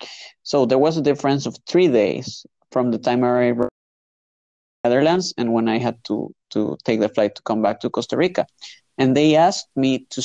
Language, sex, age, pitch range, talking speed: English, male, 30-49, 115-140 Hz, 200 wpm